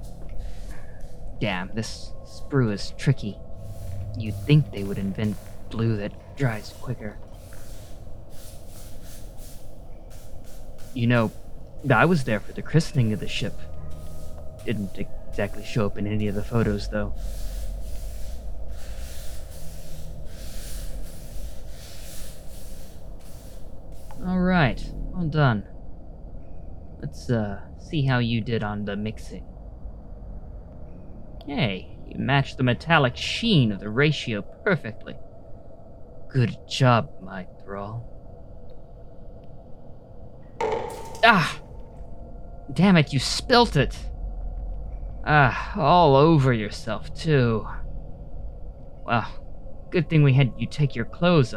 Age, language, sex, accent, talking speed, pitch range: 20-39, English, male, American, 95 wpm, 90-130 Hz